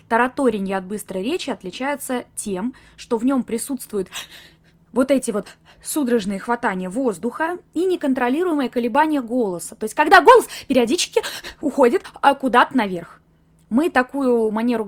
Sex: female